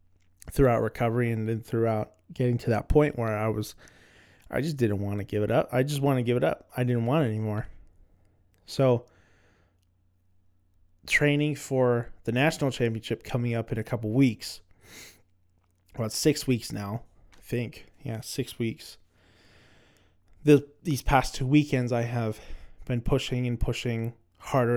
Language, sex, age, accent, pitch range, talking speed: English, male, 20-39, American, 95-125 Hz, 155 wpm